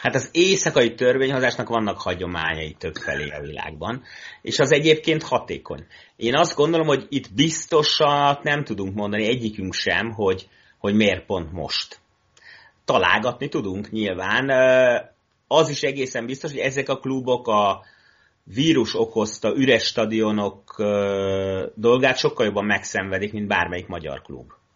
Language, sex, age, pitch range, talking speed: Hungarian, male, 30-49, 105-140 Hz, 130 wpm